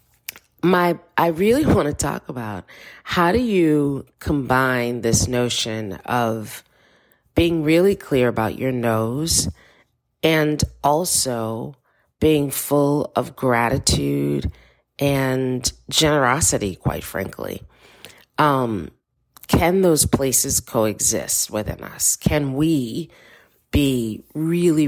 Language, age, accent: English, 40-59, American